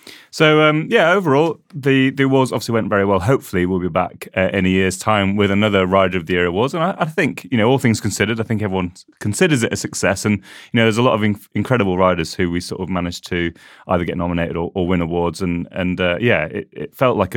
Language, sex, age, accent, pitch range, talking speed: English, male, 30-49, British, 90-110 Hz, 255 wpm